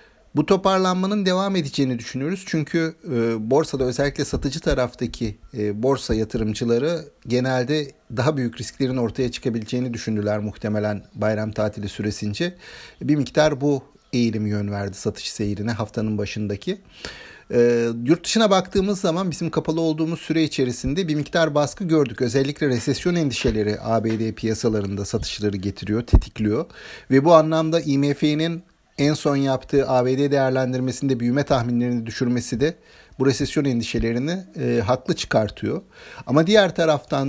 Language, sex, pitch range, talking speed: Turkish, male, 115-160 Hz, 125 wpm